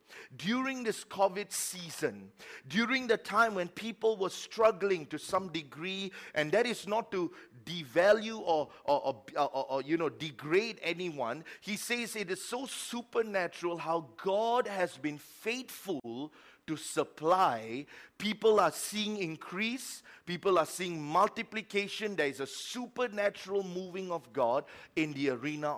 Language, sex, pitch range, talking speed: English, male, 165-235 Hz, 140 wpm